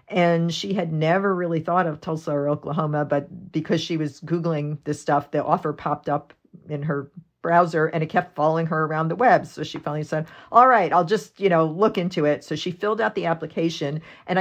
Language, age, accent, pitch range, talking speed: English, 50-69, American, 150-185 Hz, 215 wpm